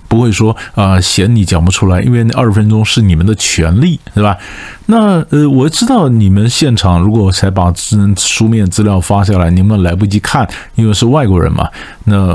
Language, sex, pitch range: Chinese, male, 95-130 Hz